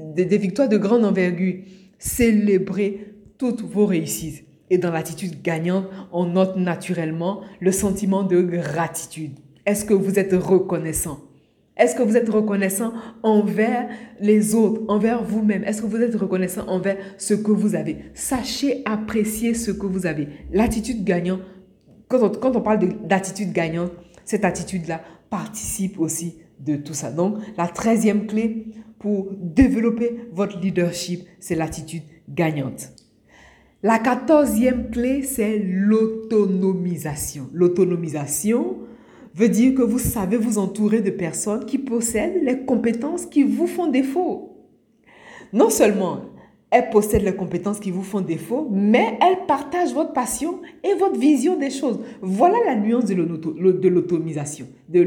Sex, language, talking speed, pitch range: female, French, 135 wpm, 180-230 Hz